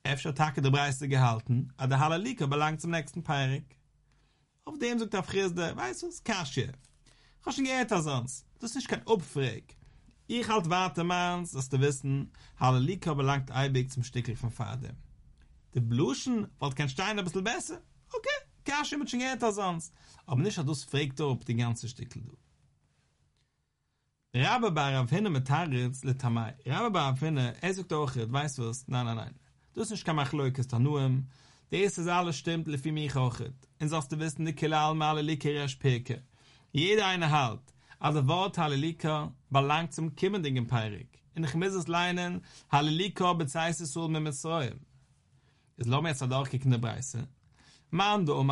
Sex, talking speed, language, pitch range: male, 180 wpm, English, 130-170 Hz